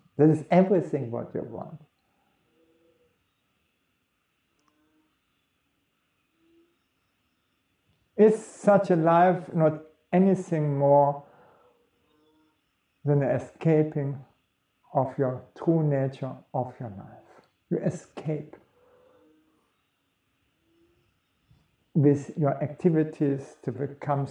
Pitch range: 140-175 Hz